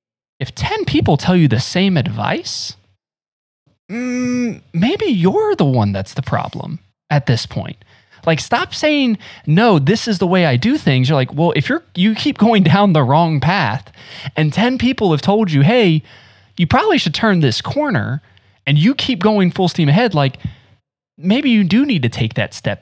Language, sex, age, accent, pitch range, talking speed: English, male, 20-39, American, 125-180 Hz, 185 wpm